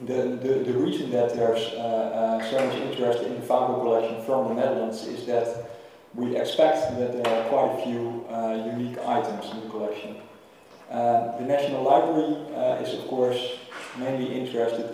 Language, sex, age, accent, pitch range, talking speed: English, male, 40-59, Dutch, 115-125 Hz, 175 wpm